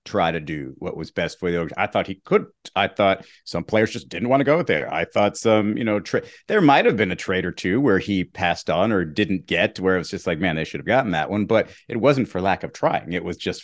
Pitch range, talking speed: 90-115 Hz, 280 wpm